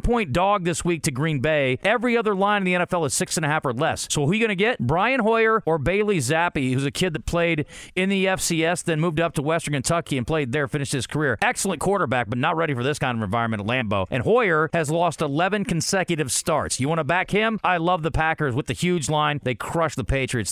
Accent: American